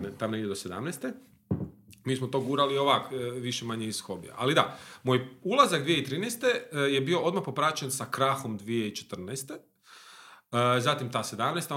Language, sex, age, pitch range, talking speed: Croatian, male, 40-59, 105-140 Hz, 140 wpm